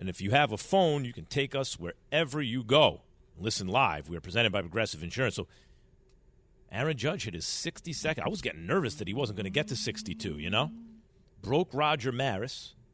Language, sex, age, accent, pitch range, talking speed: English, male, 40-59, American, 115-155 Hz, 205 wpm